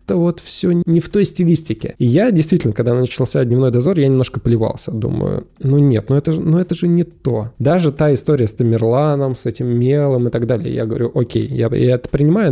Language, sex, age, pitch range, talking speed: Russian, male, 20-39, 120-155 Hz, 225 wpm